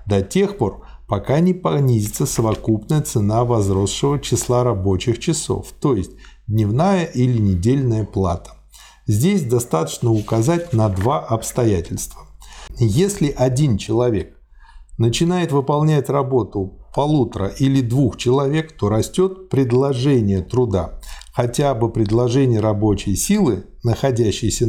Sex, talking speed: male, 105 wpm